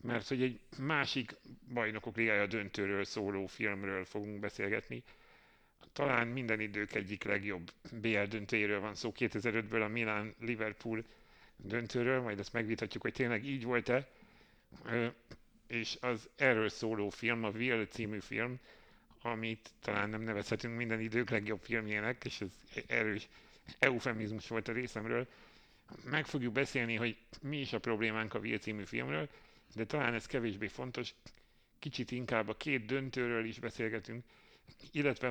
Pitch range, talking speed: 105-120 Hz, 140 wpm